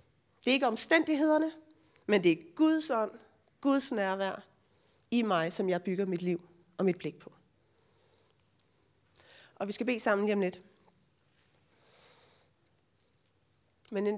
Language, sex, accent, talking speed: Danish, female, native, 130 wpm